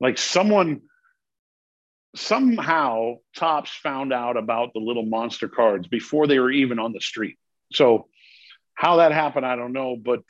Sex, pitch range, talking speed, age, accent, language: male, 120-150 Hz, 150 wpm, 50-69, American, English